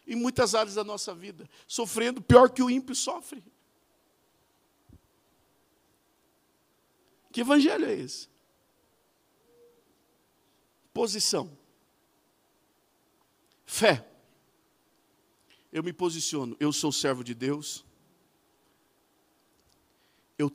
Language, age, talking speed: Portuguese, 50-69, 80 wpm